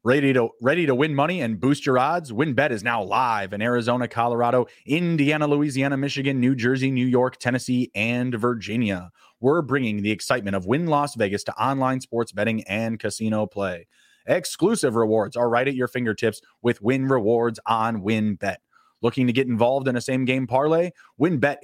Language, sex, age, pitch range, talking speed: English, male, 30-49, 115-135 Hz, 175 wpm